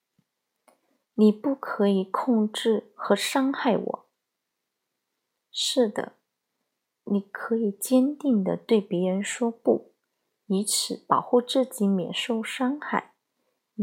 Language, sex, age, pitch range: Chinese, female, 20-39, 200-245 Hz